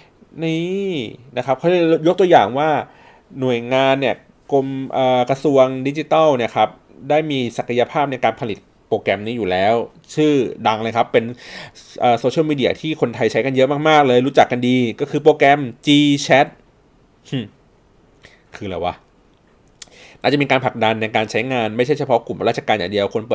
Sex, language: male, Thai